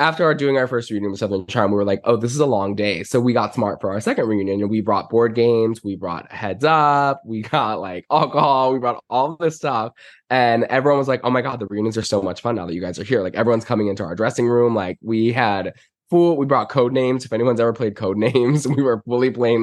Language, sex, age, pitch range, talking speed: English, male, 10-29, 100-120 Hz, 270 wpm